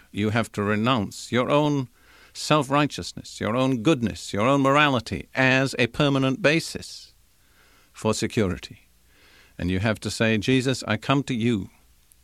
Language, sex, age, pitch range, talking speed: English, male, 50-69, 100-130 Hz, 140 wpm